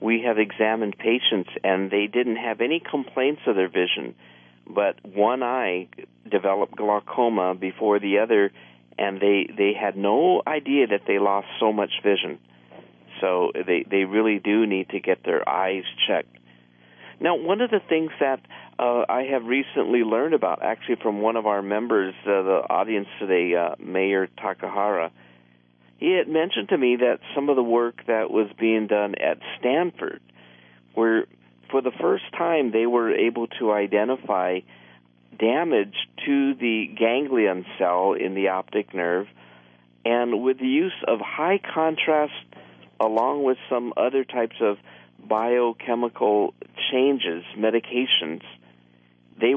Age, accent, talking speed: 50-69, American, 145 wpm